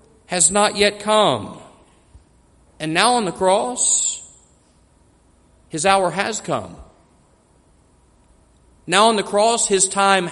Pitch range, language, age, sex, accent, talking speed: 145-210 Hz, English, 40-59, male, American, 110 wpm